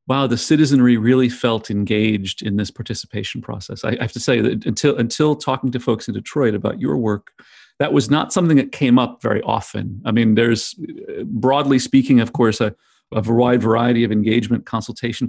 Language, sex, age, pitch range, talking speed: English, male, 40-59, 110-130 Hz, 190 wpm